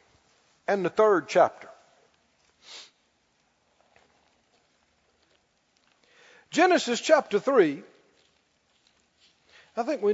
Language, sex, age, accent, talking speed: English, male, 50-69, American, 60 wpm